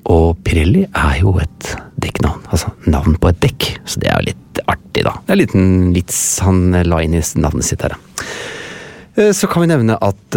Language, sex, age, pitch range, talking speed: English, male, 30-49, 85-105 Hz, 195 wpm